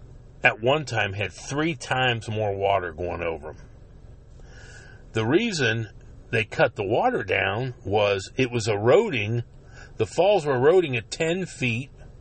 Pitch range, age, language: 100-130 Hz, 50-69, English